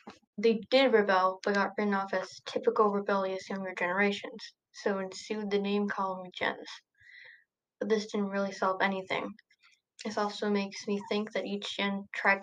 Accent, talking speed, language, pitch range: American, 160 wpm, English, 195-220 Hz